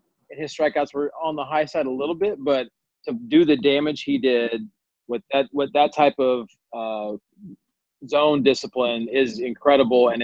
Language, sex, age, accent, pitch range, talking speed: English, male, 30-49, American, 125-145 Hz, 170 wpm